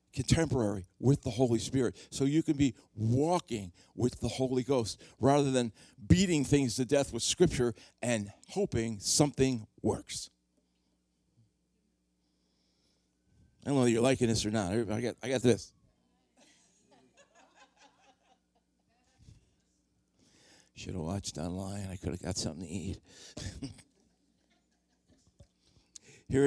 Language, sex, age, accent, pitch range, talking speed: English, male, 60-79, American, 95-145 Hz, 120 wpm